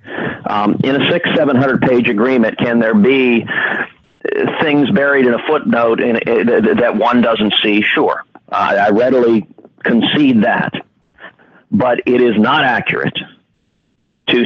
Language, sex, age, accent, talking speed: English, male, 50-69, American, 135 wpm